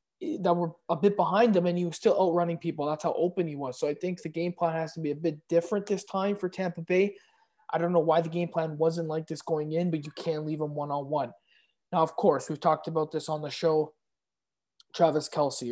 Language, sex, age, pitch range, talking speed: English, male, 20-39, 155-190 Hz, 245 wpm